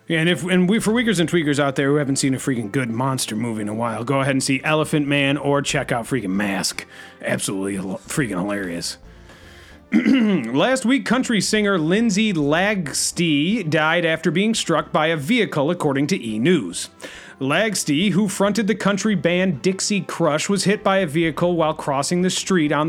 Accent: American